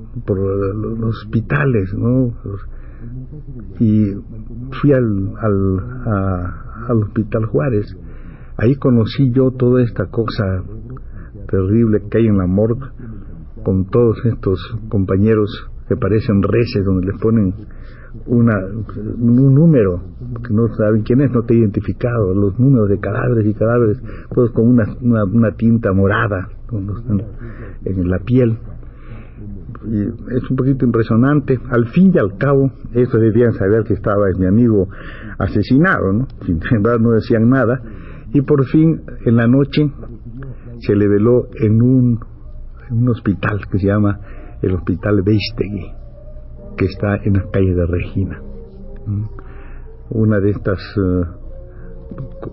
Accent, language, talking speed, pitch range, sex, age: Mexican, Spanish, 140 wpm, 100-120 Hz, male, 60-79